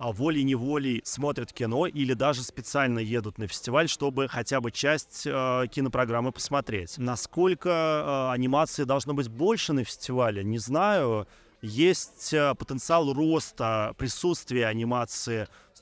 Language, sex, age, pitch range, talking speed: Russian, male, 30-49, 115-140 Hz, 125 wpm